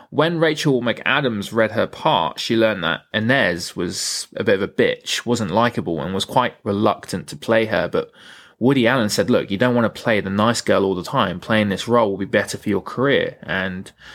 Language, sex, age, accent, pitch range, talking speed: English, male, 20-39, British, 100-140 Hz, 215 wpm